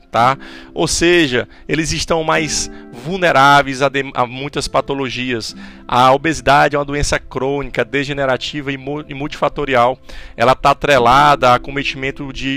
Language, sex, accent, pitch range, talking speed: Portuguese, male, Brazilian, 130-165 Hz, 125 wpm